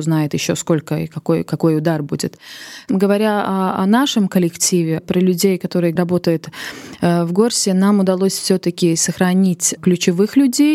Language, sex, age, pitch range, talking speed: Russian, female, 20-39, 165-195 Hz, 145 wpm